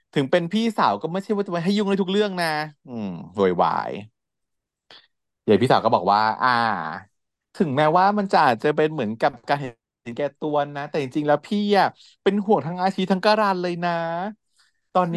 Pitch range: 110-175 Hz